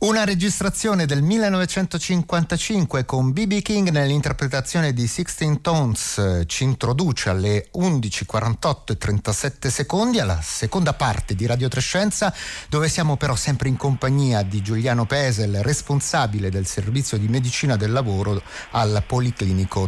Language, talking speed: Italian, 130 wpm